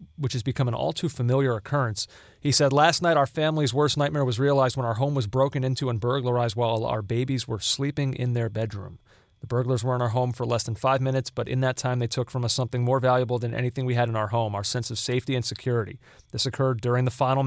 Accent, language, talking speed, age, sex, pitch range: American, English, 245 wpm, 30-49, male, 115-135 Hz